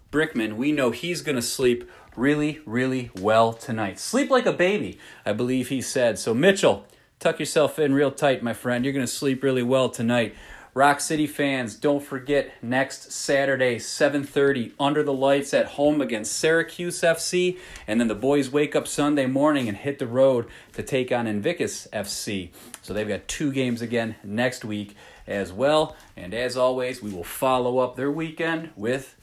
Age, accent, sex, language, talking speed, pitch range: 30-49, American, male, English, 180 wpm, 115-145 Hz